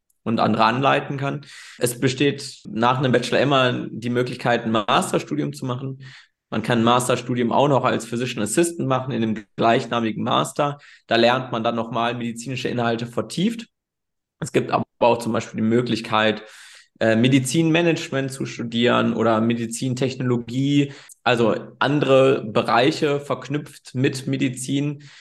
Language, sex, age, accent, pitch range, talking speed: German, male, 20-39, German, 115-135 Hz, 135 wpm